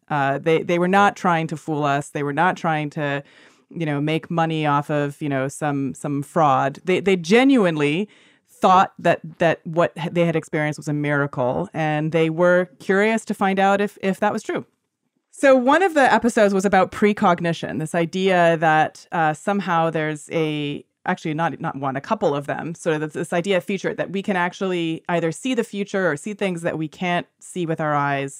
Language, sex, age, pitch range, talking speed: English, female, 30-49, 150-185 Hz, 205 wpm